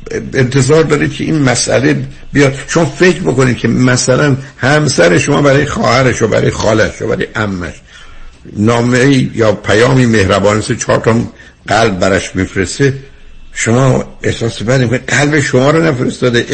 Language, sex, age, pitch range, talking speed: Persian, male, 60-79, 110-145 Hz, 135 wpm